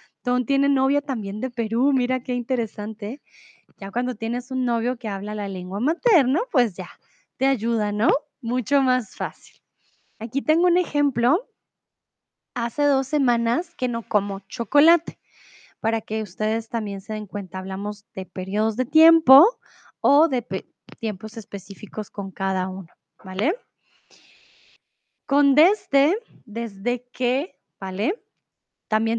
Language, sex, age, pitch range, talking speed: Spanish, female, 20-39, 210-275 Hz, 135 wpm